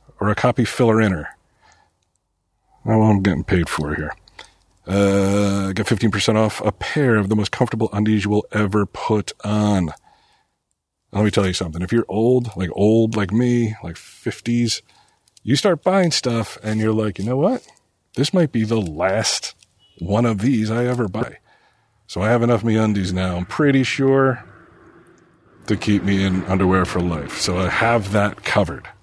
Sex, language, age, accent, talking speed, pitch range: male, English, 40-59, American, 175 wpm, 95-120 Hz